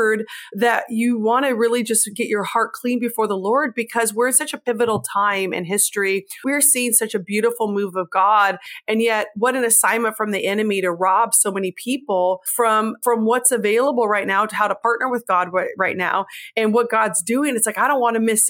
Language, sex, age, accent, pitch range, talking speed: English, female, 30-49, American, 205-240 Hz, 225 wpm